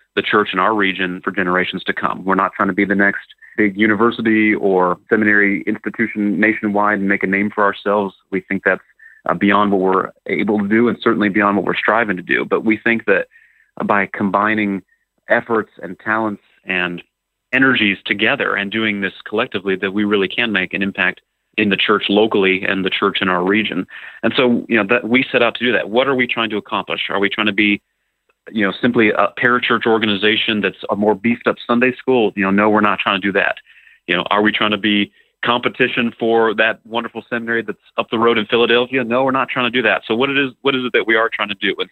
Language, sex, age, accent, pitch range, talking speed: English, male, 30-49, American, 100-115 Hz, 230 wpm